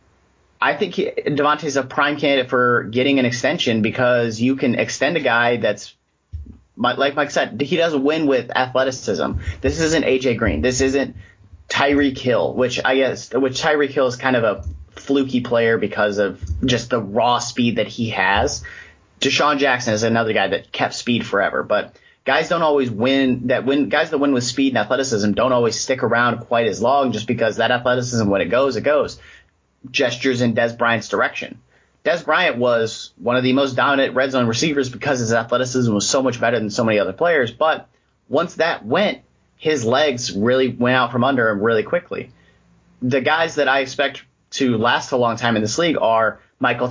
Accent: American